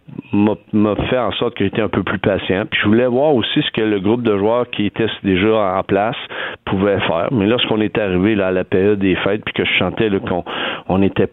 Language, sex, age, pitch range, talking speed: French, male, 50-69, 95-115 Hz, 240 wpm